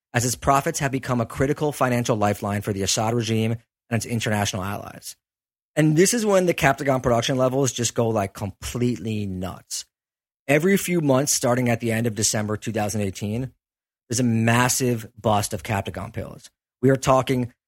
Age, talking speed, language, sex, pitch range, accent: 30-49, 170 wpm, English, male, 115-135 Hz, American